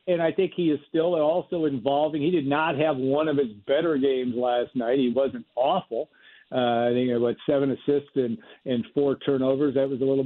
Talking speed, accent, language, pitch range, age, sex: 220 wpm, American, English, 135-170 Hz, 60-79, male